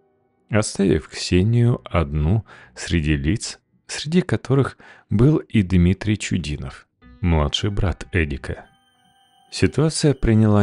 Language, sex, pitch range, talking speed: Russian, male, 80-120 Hz, 90 wpm